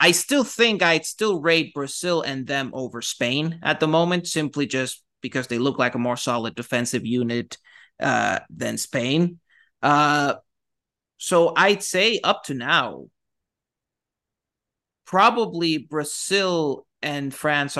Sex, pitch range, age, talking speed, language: male, 135-170 Hz, 30-49, 130 wpm, English